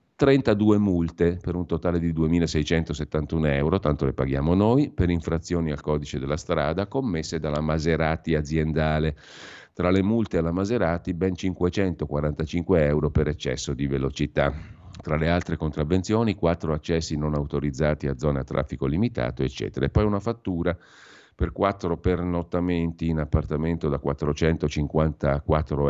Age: 40-59